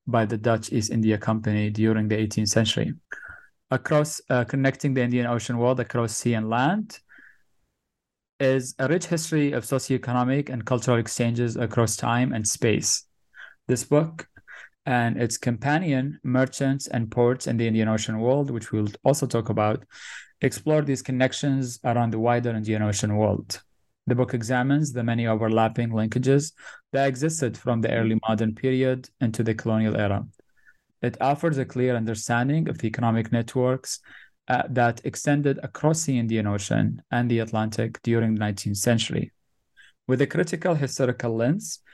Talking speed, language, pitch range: 155 wpm, English, 115-135 Hz